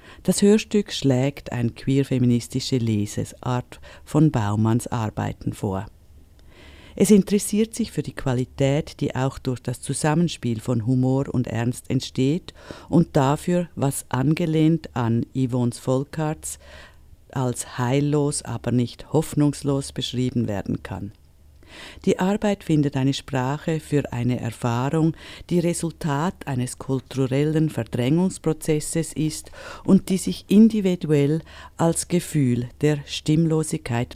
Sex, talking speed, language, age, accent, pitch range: female, 110 wpm, German, 50-69, German, 120-160 Hz